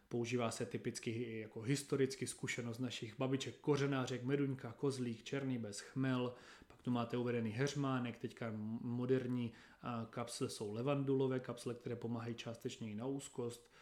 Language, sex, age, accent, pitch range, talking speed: Czech, male, 30-49, native, 115-130 Hz, 135 wpm